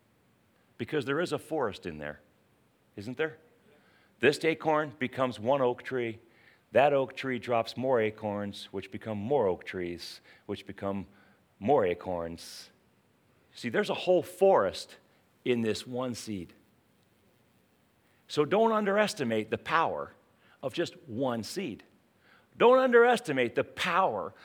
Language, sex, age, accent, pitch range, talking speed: English, male, 40-59, American, 120-200 Hz, 130 wpm